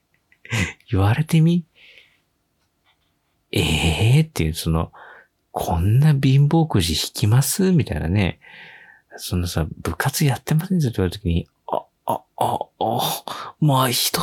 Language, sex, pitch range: Japanese, male, 90-135 Hz